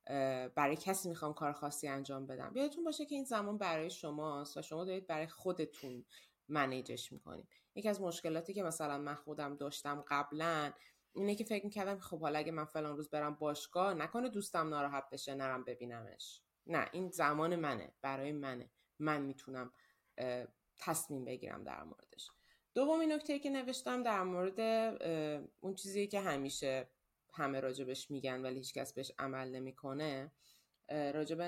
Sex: female